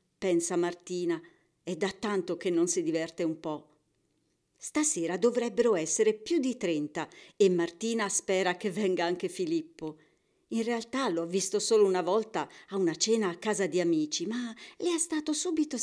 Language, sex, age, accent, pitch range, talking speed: Italian, female, 50-69, native, 180-275 Hz, 165 wpm